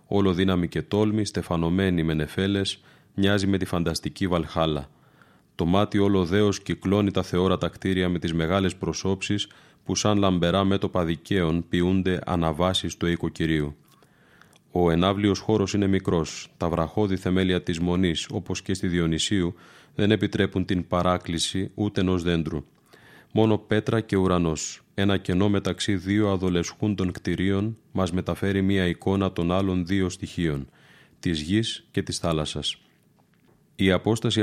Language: Greek